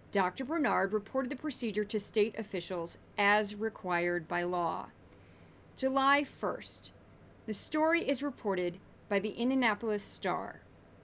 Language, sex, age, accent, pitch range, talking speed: English, female, 40-59, American, 185-265 Hz, 120 wpm